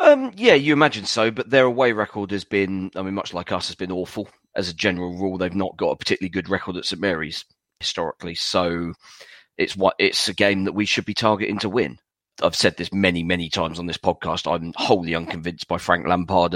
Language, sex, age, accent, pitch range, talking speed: English, male, 30-49, British, 90-105 Hz, 225 wpm